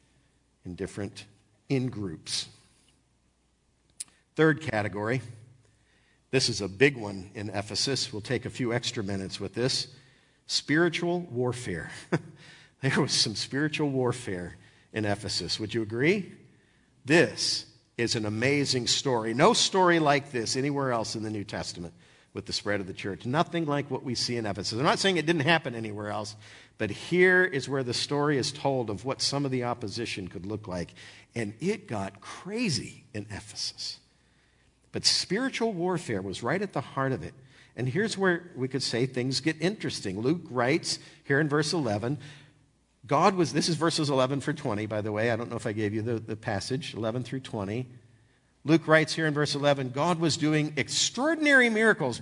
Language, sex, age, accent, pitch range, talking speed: English, male, 50-69, American, 110-150 Hz, 175 wpm